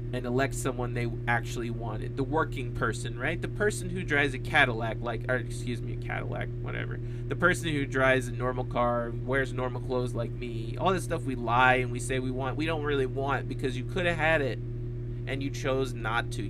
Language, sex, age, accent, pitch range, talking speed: English, male, 20-39, American, 120-130 Hz, 220 wpm